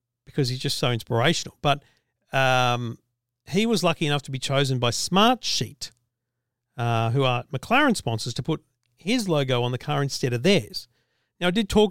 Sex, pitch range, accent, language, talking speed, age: male, 125-160 Hz, Australian, English, 175 wpm, 50-69